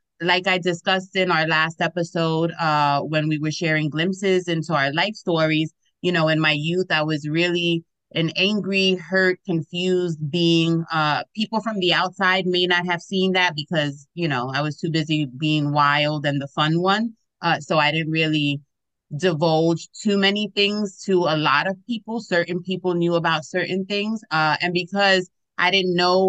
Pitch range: 150-180 Hz